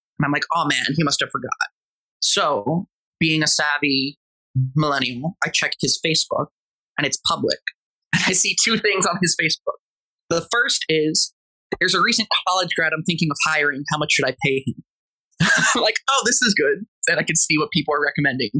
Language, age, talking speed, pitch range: English, 20-39, 195 wpm, 145-175 Hz